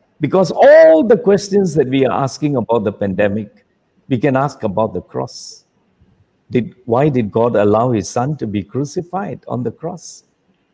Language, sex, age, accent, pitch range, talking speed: English, male, 60-79, Indian, 120-185 Hz, 170 wpm